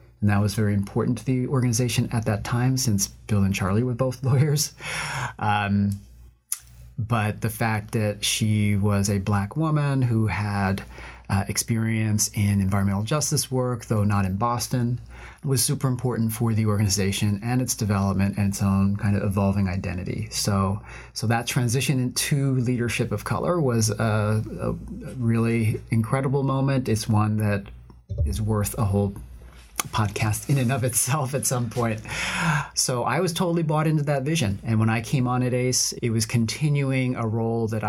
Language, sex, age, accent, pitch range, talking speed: English, male, 30-49, American, 105-130 Hz, 170 wpm